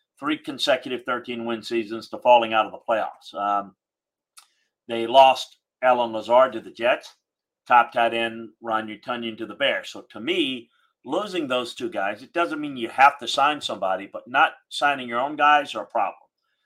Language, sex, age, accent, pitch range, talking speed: English, male, 50-69, American, 115-140 Hz, 180 wpm